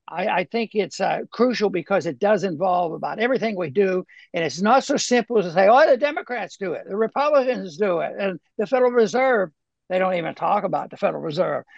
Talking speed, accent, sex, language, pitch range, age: 220 wpm, American, male, English, 190-245 Hz, 60-79